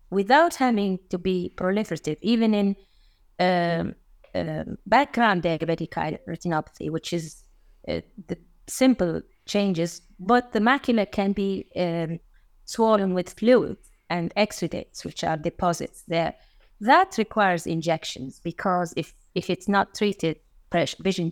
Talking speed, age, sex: 120 wpm, 30-49, female